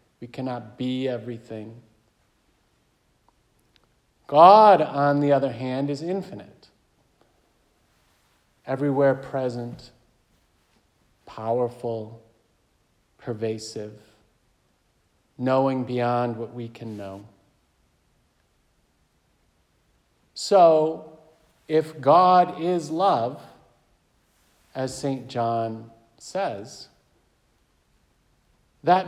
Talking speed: 65 wpm